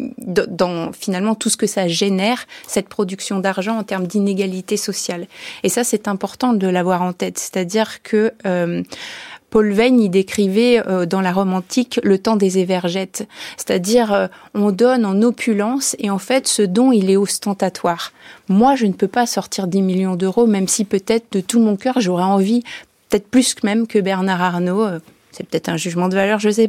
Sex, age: female, 30-49